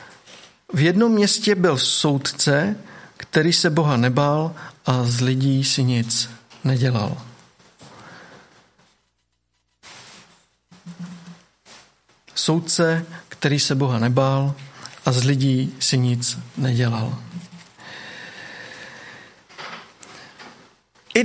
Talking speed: 75 wpm